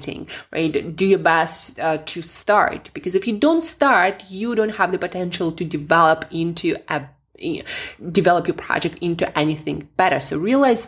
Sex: female